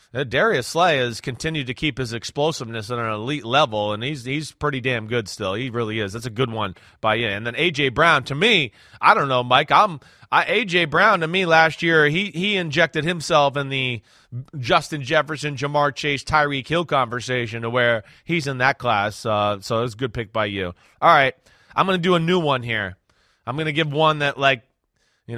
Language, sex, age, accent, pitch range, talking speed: English, male, 30-49, American, 130-170 Hz, 210 wpm